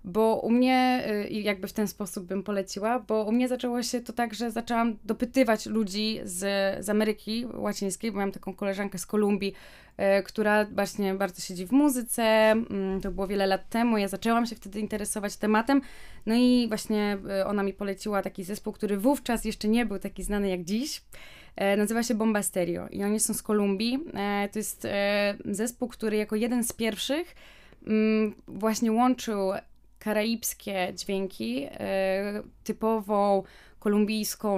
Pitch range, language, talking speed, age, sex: 195-225 Hz, Polish, 155 wpm, 20-39, female